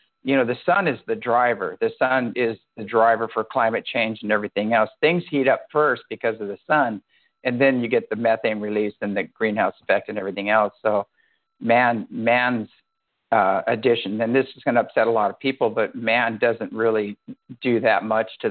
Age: 50-69